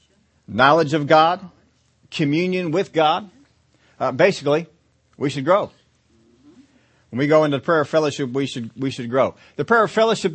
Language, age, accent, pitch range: English, 40-59, American, 130-160 Hz